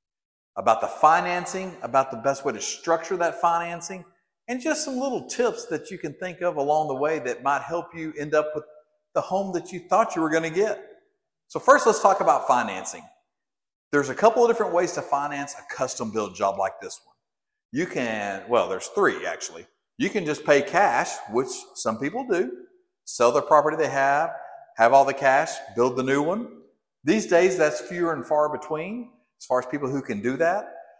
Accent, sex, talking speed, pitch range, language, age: American, male, 200 wpm, 145-230 Hz, English, 50-69